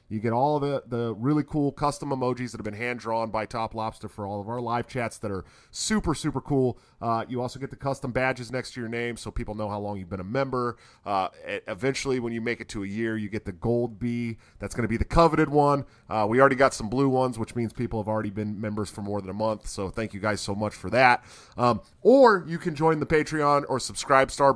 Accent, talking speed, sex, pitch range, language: American, 255 wpm, male, 105-135 Hz, English